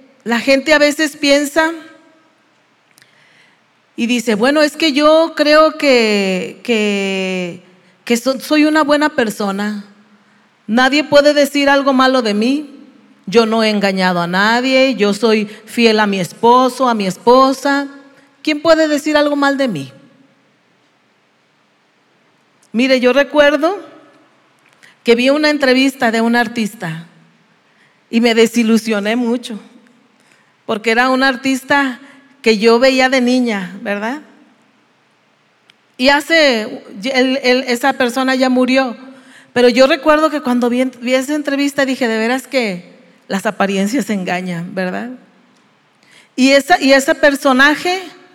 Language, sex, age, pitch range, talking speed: Spanish, female, 40-59, 225-280 Hz, 125 wpm